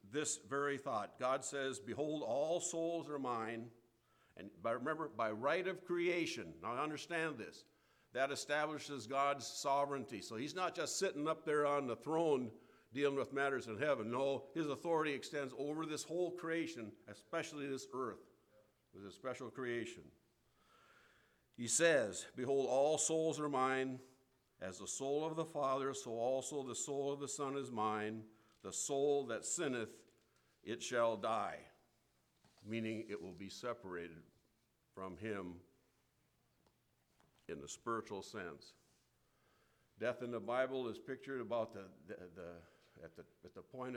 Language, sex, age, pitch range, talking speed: English, male, 50-69, 115-140 Hz, 145 wpm